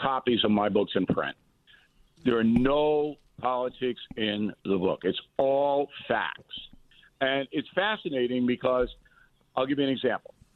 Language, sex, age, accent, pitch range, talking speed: English, male, 50-69, American, 125-170 Hz, 140 wpm